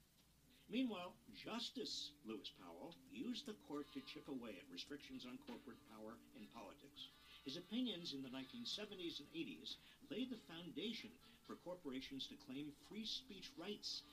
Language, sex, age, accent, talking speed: English, male, 50-69, American, 145 wpm